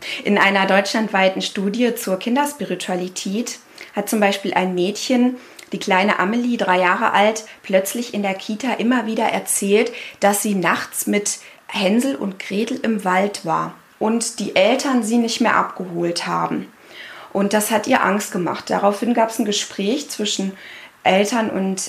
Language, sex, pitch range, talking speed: German, female, 190-235 Hz, 155 wpm